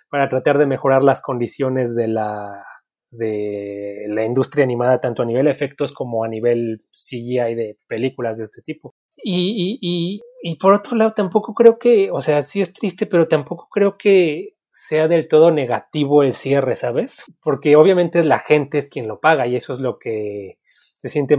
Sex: male